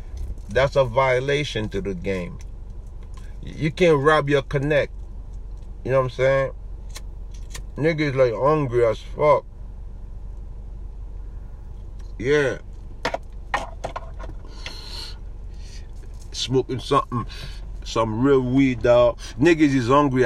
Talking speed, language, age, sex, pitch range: 90 wpm, English, 50-69, male, 95-140 Hz